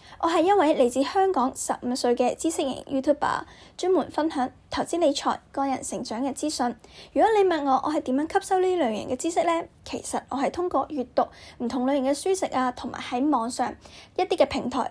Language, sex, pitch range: Chinese, female, 250-305 Hz